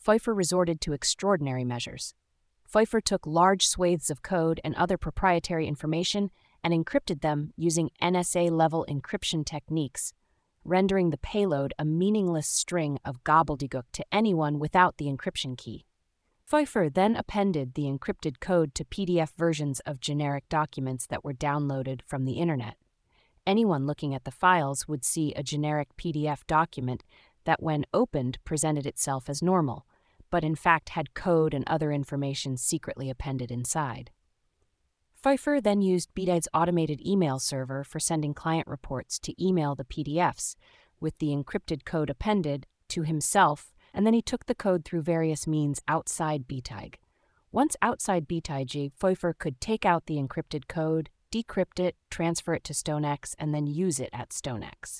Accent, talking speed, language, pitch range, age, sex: American, 150 wpm, English, 140-175 Hz, 30-49, female